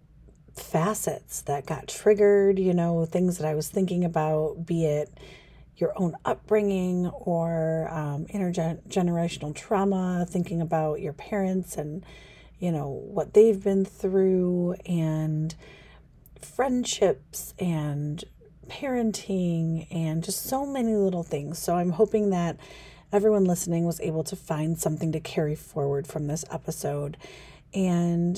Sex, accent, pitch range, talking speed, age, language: female, American, 160-190 Hz, 125 wpm, 40-59, English